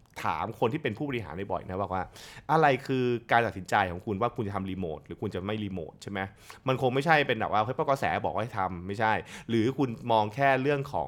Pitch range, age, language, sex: 95-130 Hz, 20-39, Thai, male